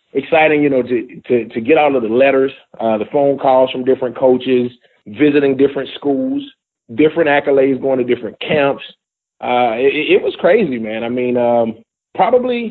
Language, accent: English, American